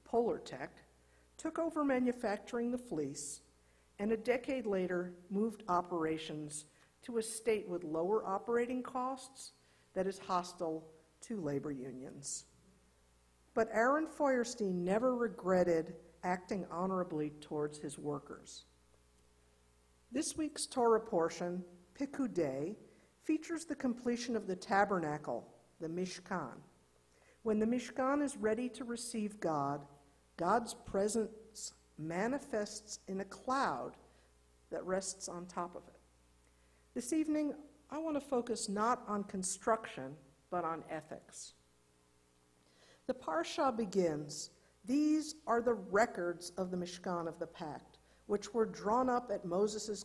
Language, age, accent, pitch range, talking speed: English, 50-69, American, 150-230 Hz, 120 wpm